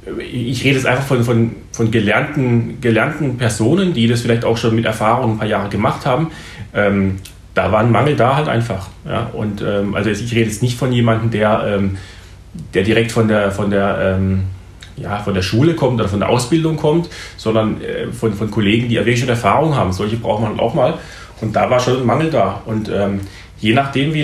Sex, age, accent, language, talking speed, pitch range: male, 30-49, German, German, 215 wpm, 105-125 Hz